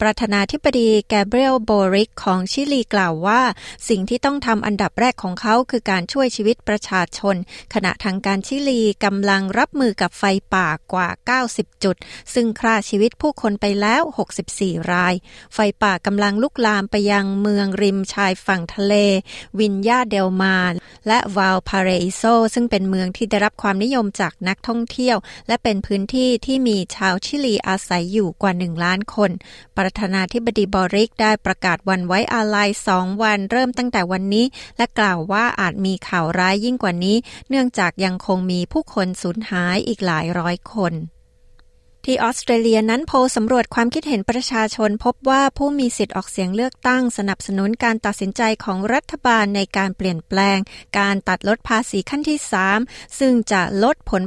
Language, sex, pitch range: Thai, female, 190-235 Hz